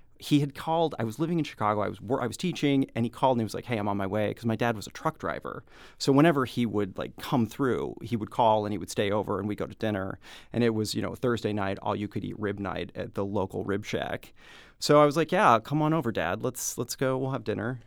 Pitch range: 105-155 Hz